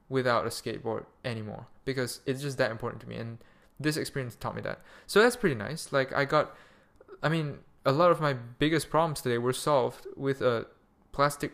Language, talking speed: English, 200 wpm